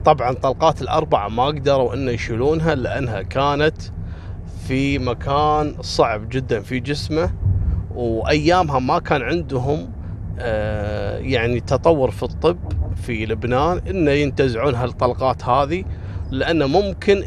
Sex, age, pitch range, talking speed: male, 30-49, 95-145 Hz, 110 wpm